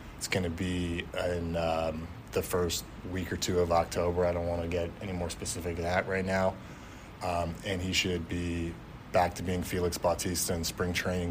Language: English